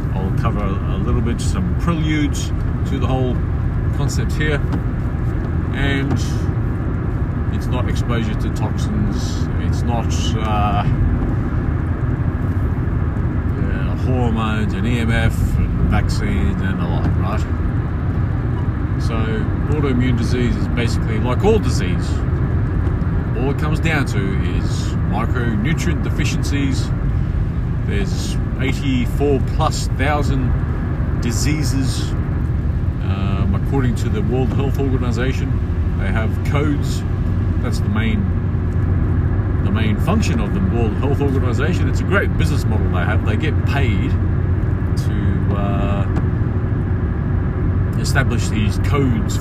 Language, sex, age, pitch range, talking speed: English, male, 40-59, 90-110 Hz, 105 wpm